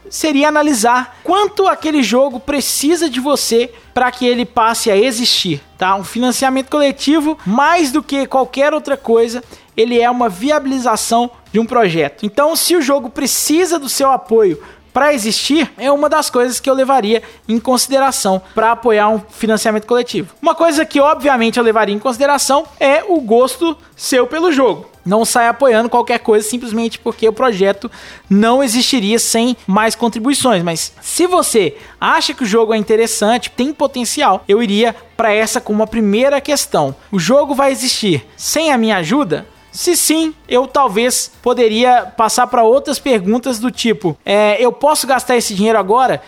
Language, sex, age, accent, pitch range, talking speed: Portuguese, male, 20-39, Brazilian, 225-280 Hz, 165 wpm